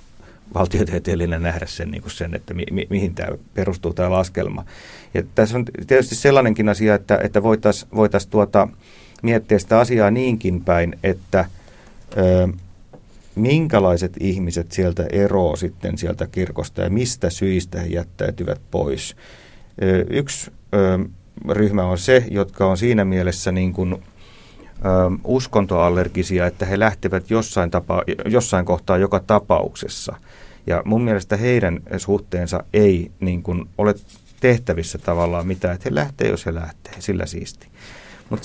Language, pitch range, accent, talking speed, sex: Finnish, 90-110 Hz, native, 115 wpm, male